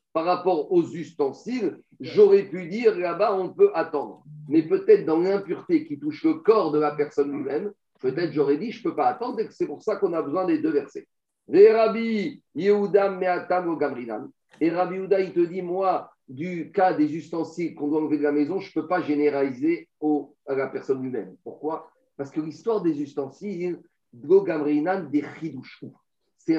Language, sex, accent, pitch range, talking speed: French, male, French, 145-220 Hz, 165 wpm